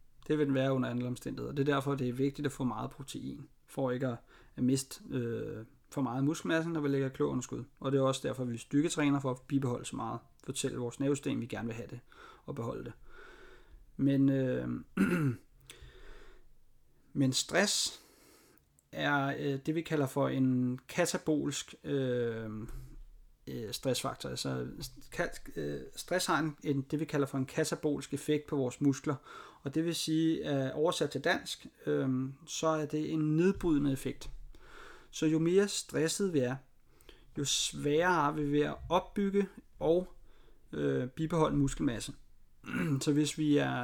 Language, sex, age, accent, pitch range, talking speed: Danish, male, 30-49, native, 130-160 Hz, 160 wpm